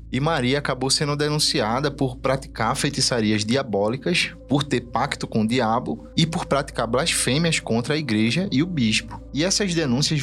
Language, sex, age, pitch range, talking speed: Portuguese, male, 20-39, 105-135 Hz, 165 wpm